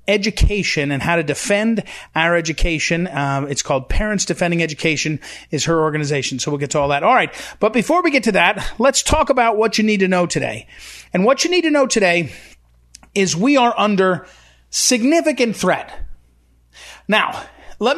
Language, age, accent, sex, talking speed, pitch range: English, 30-49, American, male, 180 wpm, 170-245 Hz